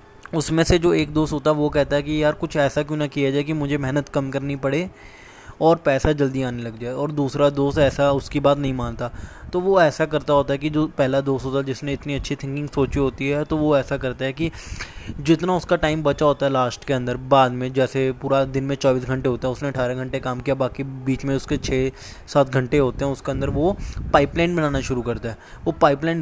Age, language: 10-29, Hindi